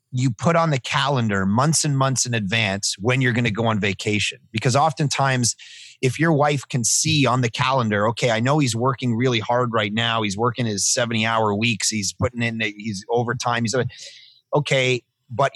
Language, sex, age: English, male, 30-49